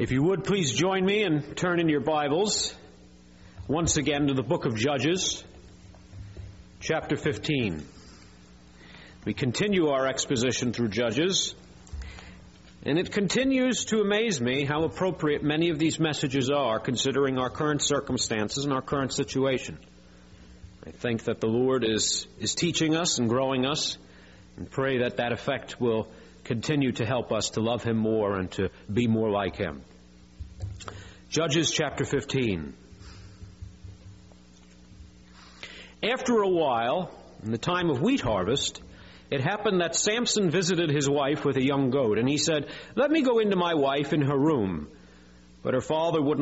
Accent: American